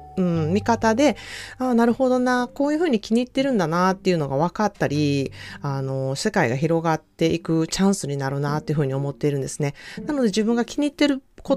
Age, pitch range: 30-49, 150-230 Hz